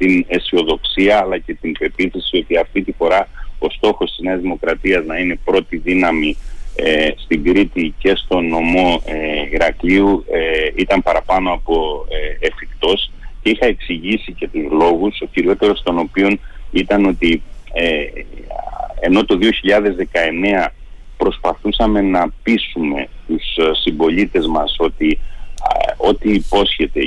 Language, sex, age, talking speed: Greek, male, 40-59, 125 wpm